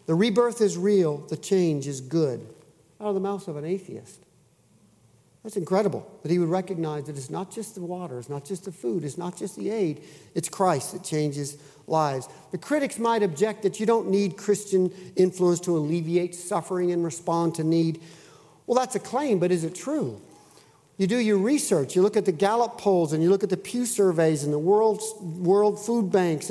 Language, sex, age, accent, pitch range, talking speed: English, male, 50-69, American, 160-195 Hz, 205 wpm